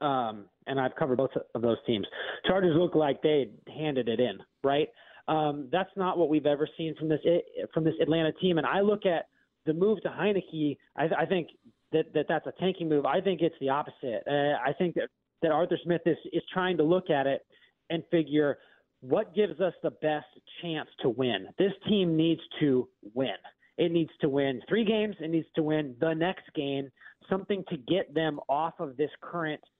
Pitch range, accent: 145-175 Hz, American